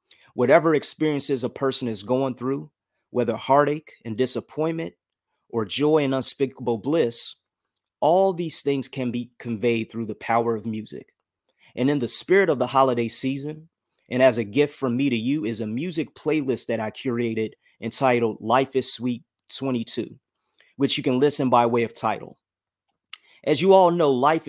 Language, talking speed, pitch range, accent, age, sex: English, 165 wpm, 120-140 Hz, American, 30-49, male